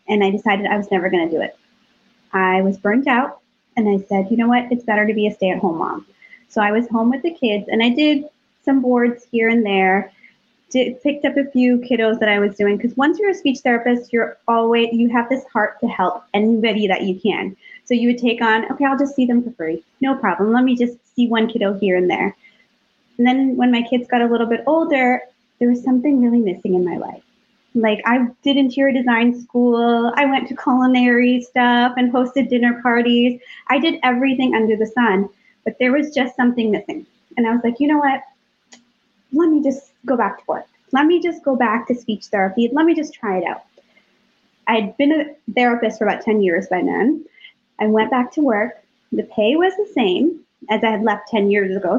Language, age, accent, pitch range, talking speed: English, 20-39, American, 215-260 Hz, 220 wpm